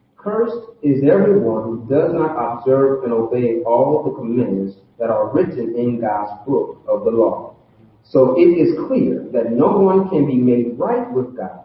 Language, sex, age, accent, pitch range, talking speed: English, male, 40-59, American, 120-195 Hz, 175 wpm